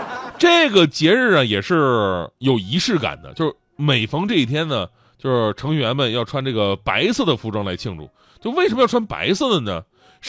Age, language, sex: 20-39, Chinese, male